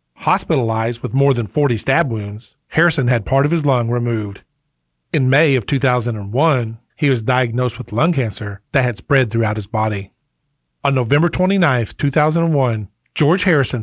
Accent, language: American, English